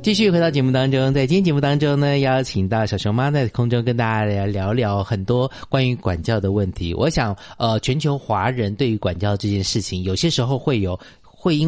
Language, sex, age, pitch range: Chinese, male, 30-49, 100-135 Hz